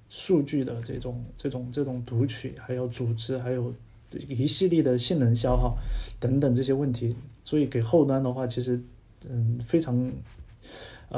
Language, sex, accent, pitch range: Chinese, male, native, 120-145 Hz